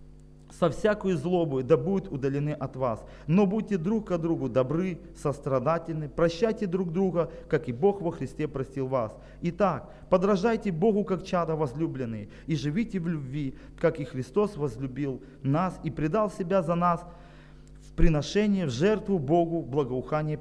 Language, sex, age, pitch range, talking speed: Ukrainian, male, 40-59, 140-190 Hz, 150 wpm